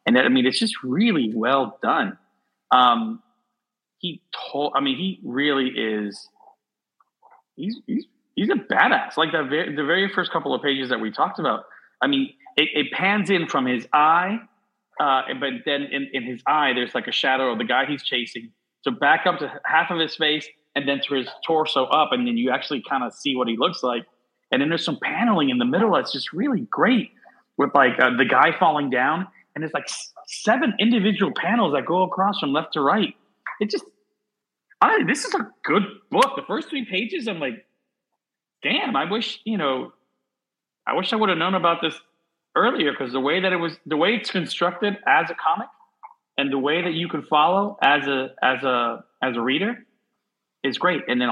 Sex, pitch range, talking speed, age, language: male, 150-225 Hz, 205 wpm, 30-49, English